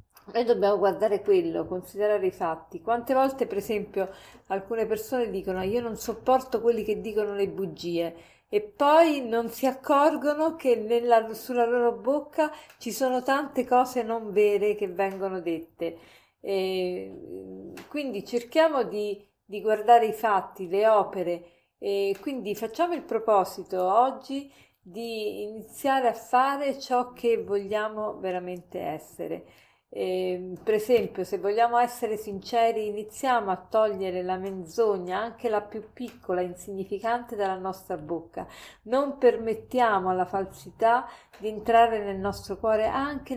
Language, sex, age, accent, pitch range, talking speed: Italian, female, 50-69, native, 190-240 Hz, 130 wpm